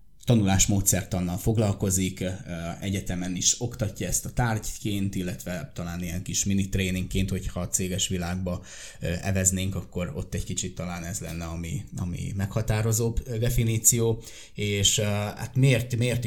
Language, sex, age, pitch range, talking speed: Hungarian, male, 20-39, 95-110 Hz, 125 wpm